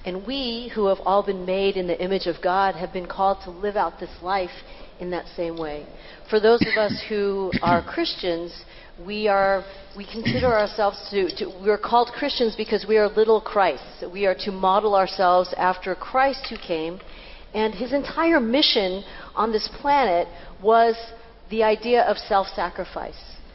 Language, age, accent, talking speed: English, 50-69, American, 175 wpm